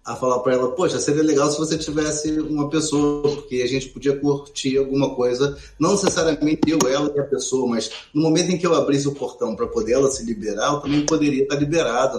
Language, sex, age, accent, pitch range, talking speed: Portuguese, male, 20-39, Brazilian, 130-165 Hz, 220 wpm